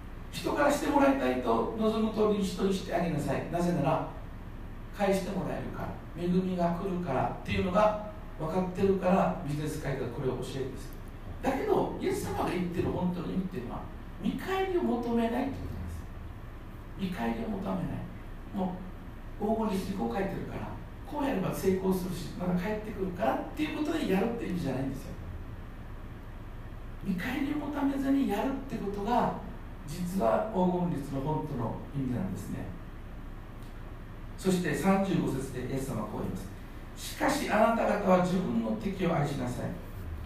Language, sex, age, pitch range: Japanese, male, 60-79, 115-190 Hz